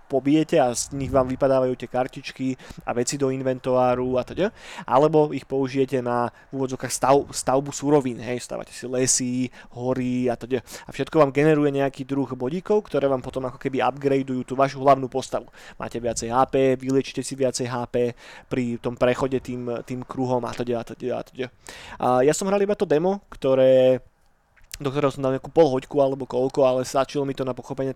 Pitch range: 125-145 Hz